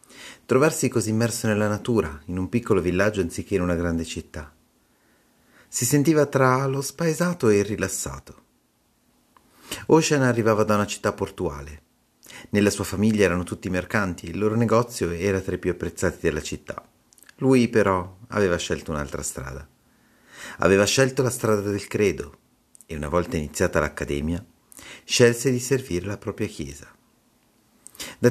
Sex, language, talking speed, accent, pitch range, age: male, Italian, 145 wpm, native, 85-110 Hz, 40-59